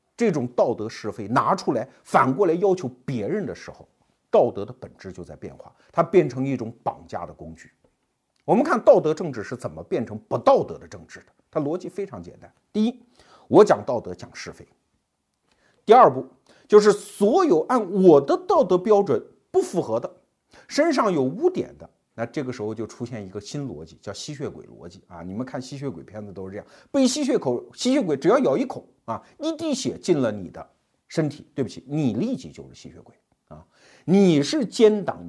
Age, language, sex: 50-69, Chinese, male